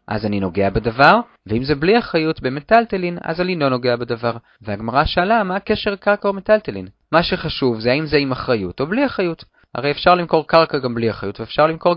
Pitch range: 115-180 Hz